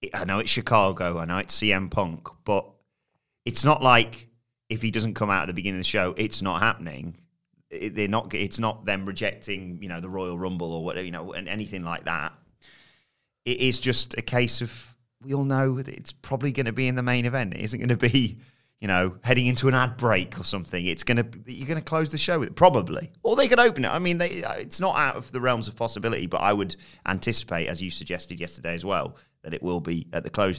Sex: male